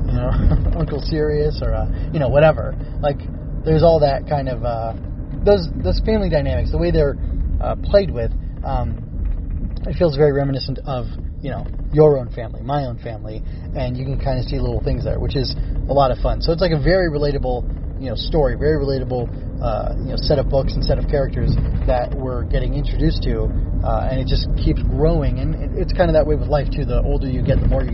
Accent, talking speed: American, 220 wpm